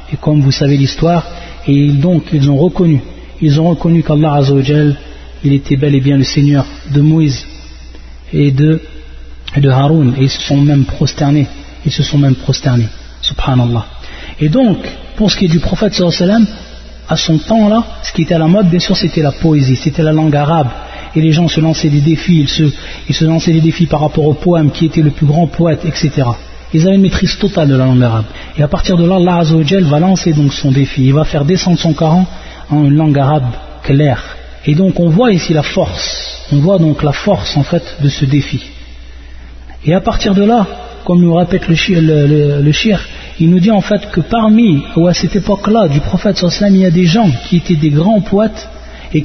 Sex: male